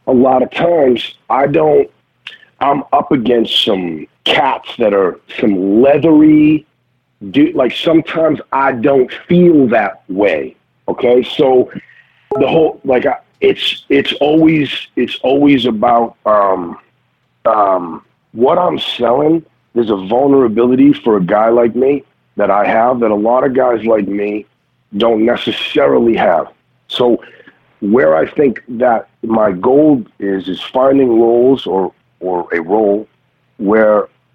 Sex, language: male, English